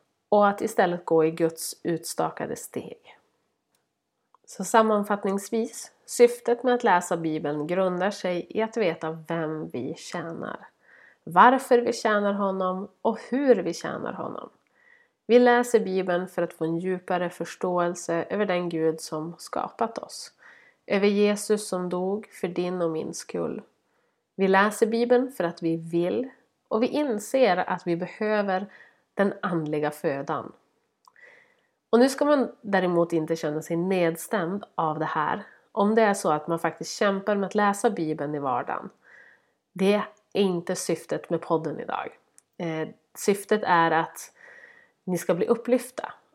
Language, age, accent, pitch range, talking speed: Swedish, 30-49, native, 165-220 Hz, 145 wpm